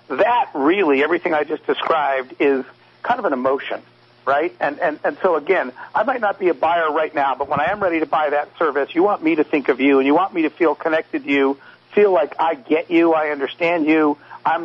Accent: American